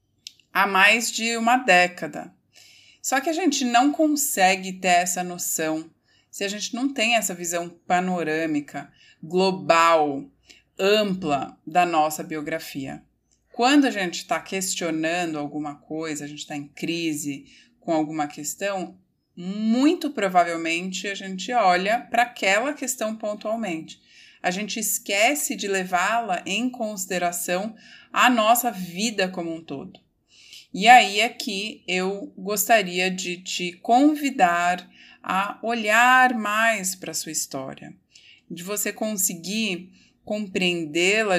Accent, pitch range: Brazilian, 175-235 Hz